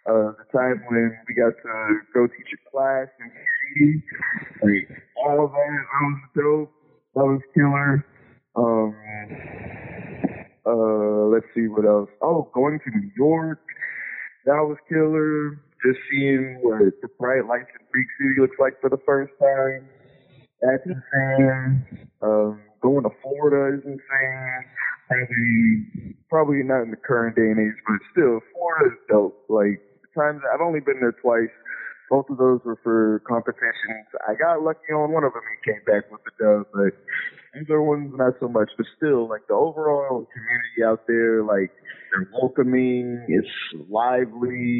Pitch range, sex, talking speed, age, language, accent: 115-140 Hz, male, 160 wpm, 20-39, English, American